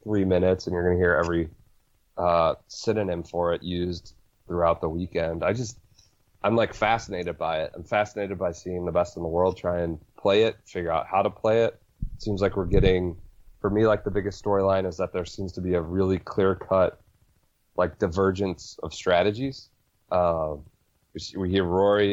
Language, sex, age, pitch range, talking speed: English, male, 20-39, 85-105 Hz, 185 wpm